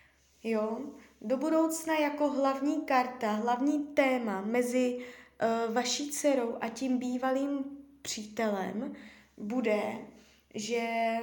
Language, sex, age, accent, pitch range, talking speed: Czech, female, 20-39, native, 230-270 Hz, 85 wpm